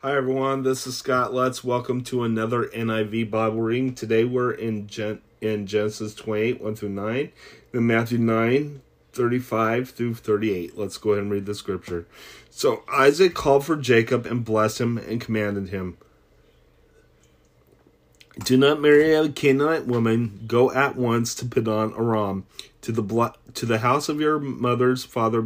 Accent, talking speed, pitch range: American, 150 wpm, 105-125 Hz